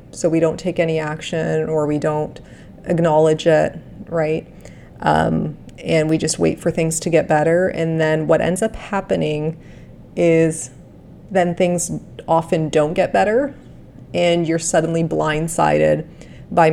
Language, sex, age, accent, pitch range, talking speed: English, female, 30-49, American, 155-175 Hz, 145 wpm